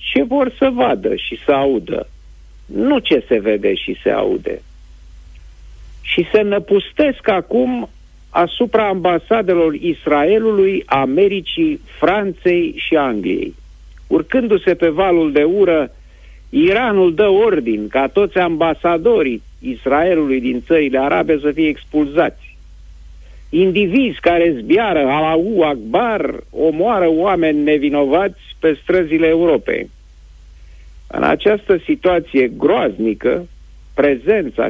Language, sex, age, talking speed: Romanian, male, 50-69, 100 wpm